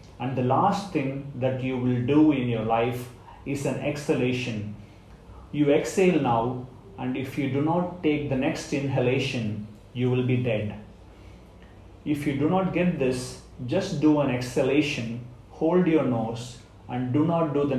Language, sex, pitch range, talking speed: English, male, 110-150 Hz, 160 wpm